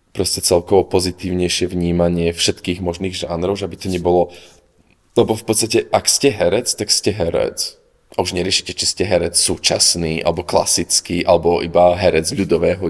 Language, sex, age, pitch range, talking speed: Slovak, male, 20-39, 90-100 Hz, 150 wpm